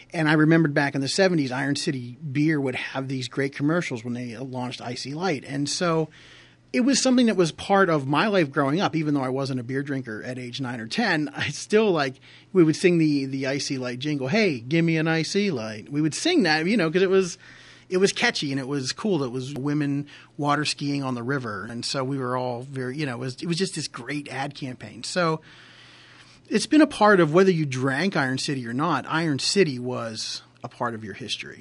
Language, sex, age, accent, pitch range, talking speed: English, male, 30-49, American, 130-165 Hz, 235 wpm